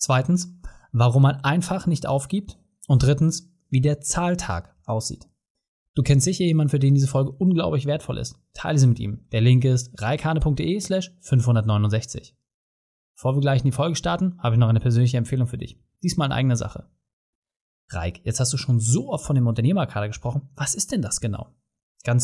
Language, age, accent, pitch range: German, 20-39, German, 120-165 Hz